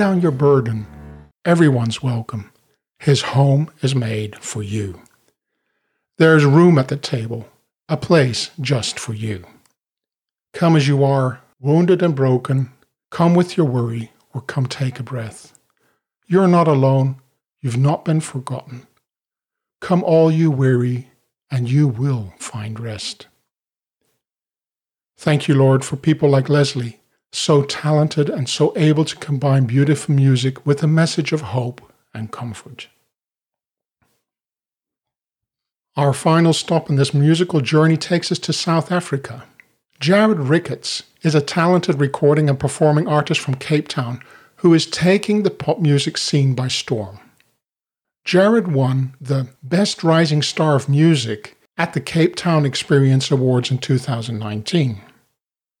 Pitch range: 130-160 Hz